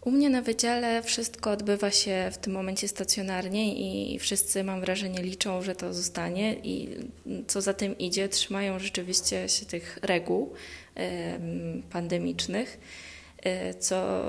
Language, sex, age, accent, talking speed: Polish, female, 20-39, native, 130 wpm